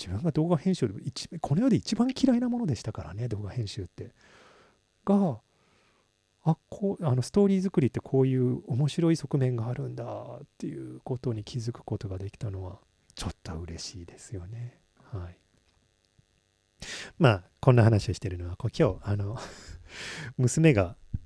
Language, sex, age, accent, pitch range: Japanese, male, 40-59, native, 105-140 Hz